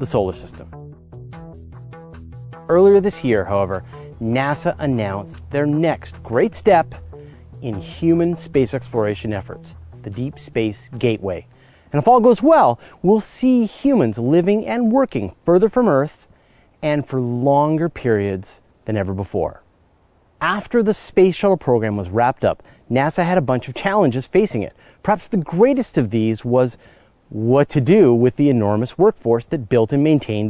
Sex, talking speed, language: male, 150 wpm, English